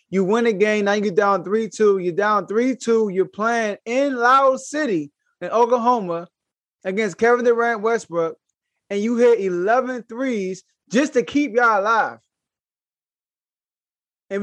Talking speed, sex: 135 wpm, male